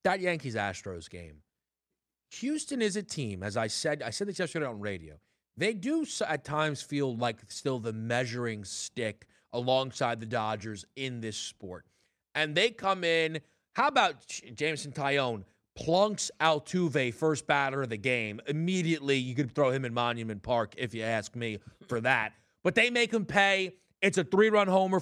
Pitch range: 120-175 Hz